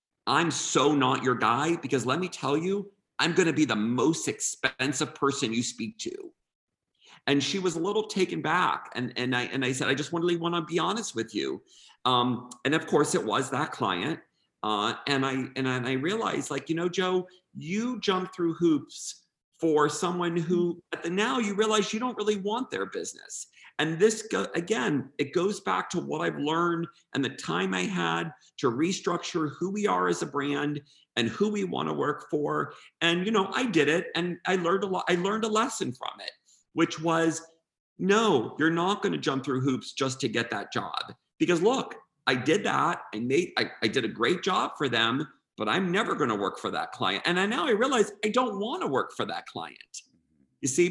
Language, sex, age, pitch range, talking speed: English, male, 50-69, 140-200 Hz, 210 wpm